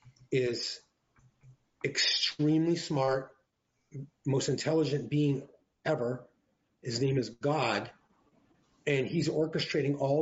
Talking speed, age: 90 wpm, 40-59